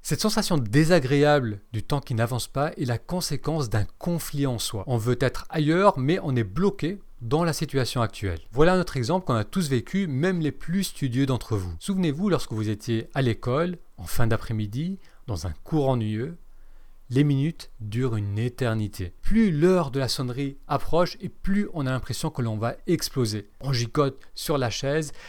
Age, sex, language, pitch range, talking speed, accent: 40-59, male, French, 115-160 Hz, 185 wpm, French